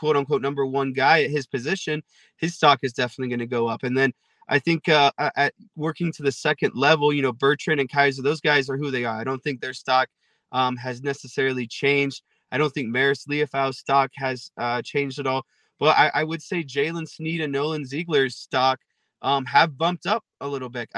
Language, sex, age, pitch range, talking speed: English, male, 20-39, 135-155 Hz, 215 wpm